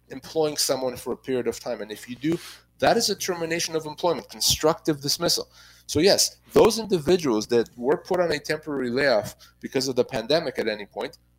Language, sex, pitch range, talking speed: English, male, 120-160 Hz, 195 wpm